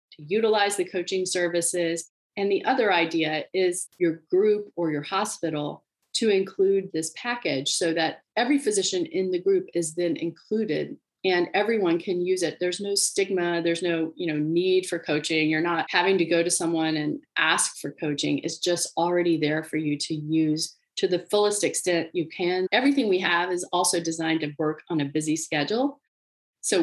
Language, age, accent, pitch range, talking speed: English, 30-49, American, 165-210 Hz, 180 wpm